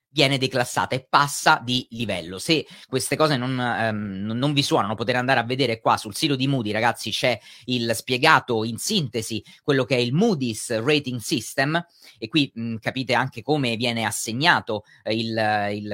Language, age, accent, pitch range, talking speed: Italian, 30-49, native, 110-140 Hz, 170 wpm